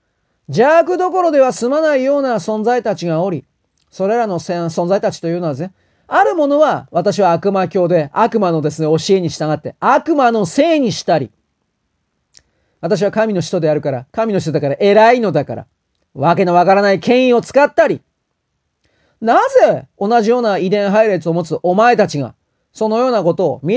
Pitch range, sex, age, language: 165-230 Hz, male, 40-59, Japanese